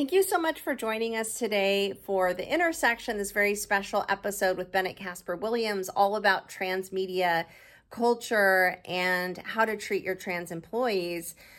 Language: English